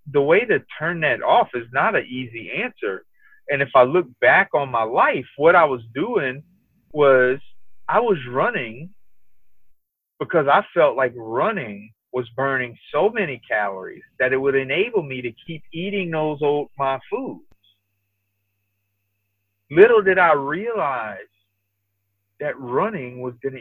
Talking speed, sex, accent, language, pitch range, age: 145 wpm, male, American, English, 105-155 Hz, 30-49